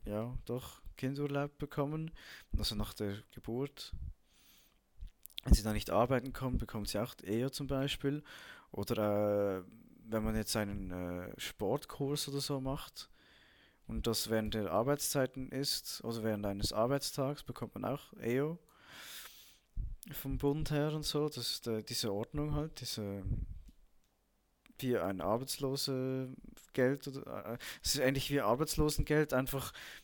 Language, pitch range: German, 105-135 Hz